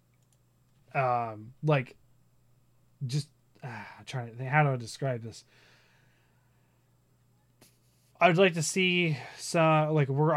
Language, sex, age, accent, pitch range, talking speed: English, male, 20-39, American, 125-145 Hz, 115 wpm